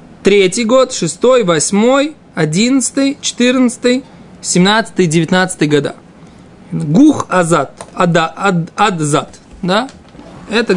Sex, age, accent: male, 20-39, native